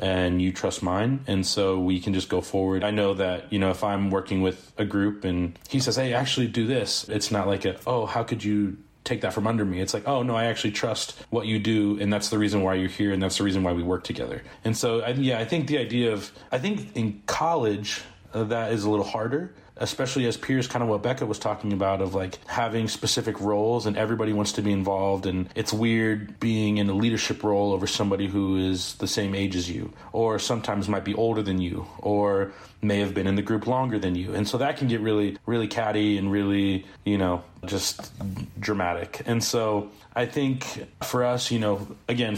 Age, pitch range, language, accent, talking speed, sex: 30-49, 100-115 Hz, English, American, 230 wpm, male